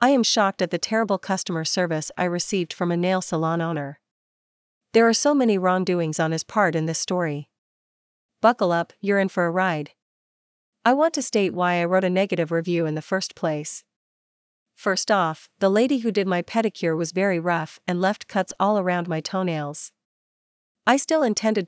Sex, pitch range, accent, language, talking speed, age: female, 170-210 Hz, American, English, 190 wpm, 40-59